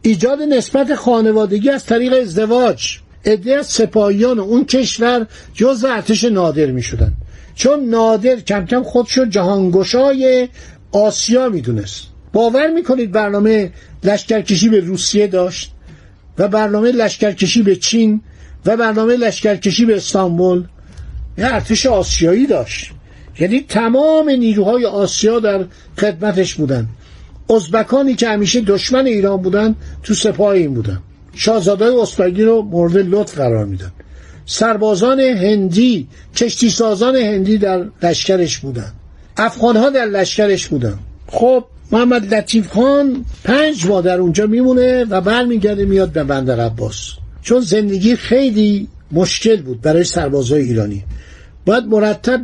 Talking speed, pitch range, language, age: 125 wpm, 180-235 Hz, Persian, 60-79